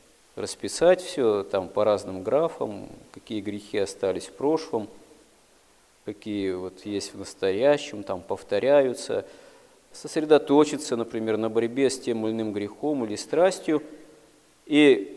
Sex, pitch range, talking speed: male, 110-180 Hz, 120 wpm